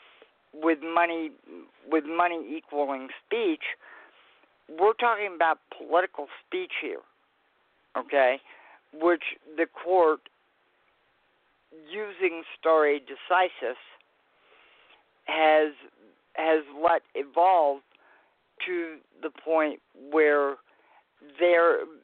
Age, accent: 50-69, American